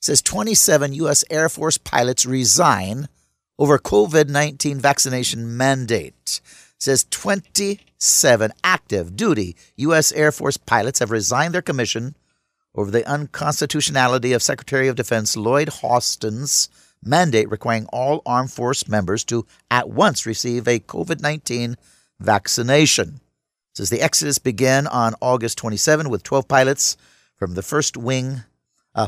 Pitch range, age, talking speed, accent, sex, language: 115-145 Hz, 50-69, 125 wpm, American, male, English